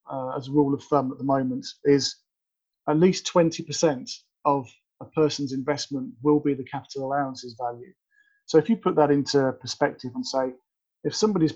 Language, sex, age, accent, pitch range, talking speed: English, male, 40-59, British, 130-165 Hz, 175 wpm